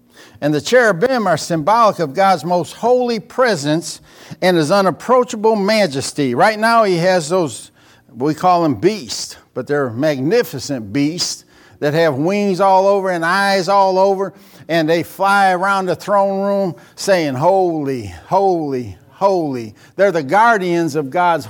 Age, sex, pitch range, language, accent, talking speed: 60-79, male, 145-200 Hz, English, American, 145 wpm